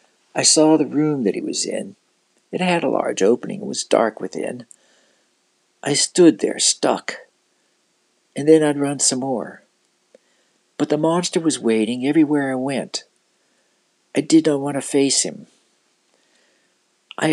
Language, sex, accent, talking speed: English, male, American, 150 wpm